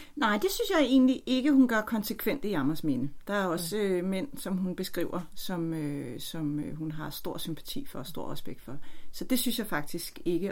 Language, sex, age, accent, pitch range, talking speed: Danish, female, 40-59, native, 150-190 Hz, 220 wpm